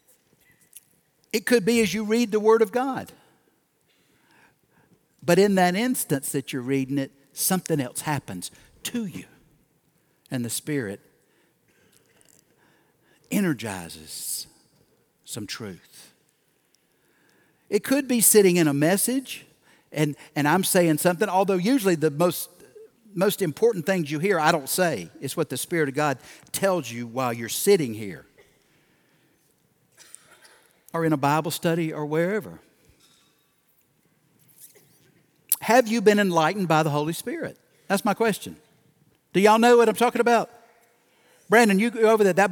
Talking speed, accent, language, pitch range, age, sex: 135 wpm, American, English, 155-220 Hz, 60-79, male